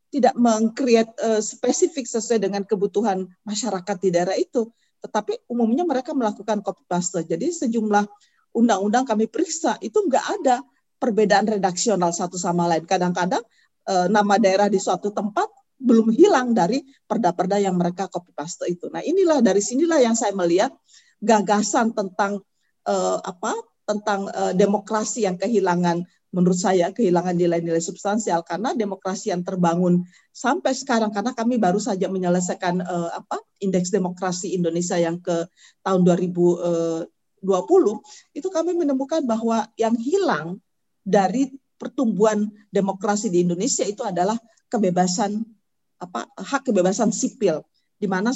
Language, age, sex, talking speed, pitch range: Indonesian, 40-59, female, 130 wpm, 185-245 Hz